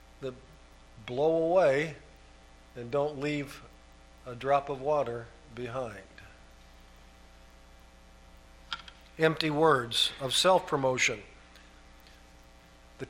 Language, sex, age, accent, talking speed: English, male, 50-69, American, 75 wpm